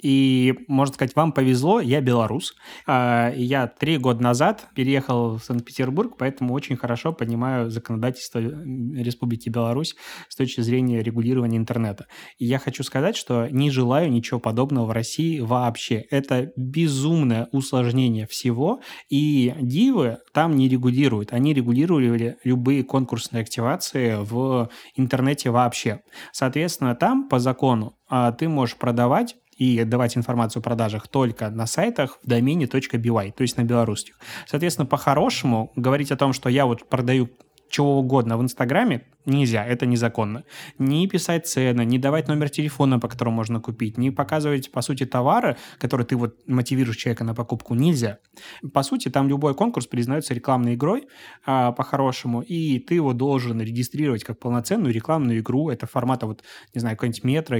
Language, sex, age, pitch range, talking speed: Russian, male, 20-39, 120-140 Hz, 150 wpm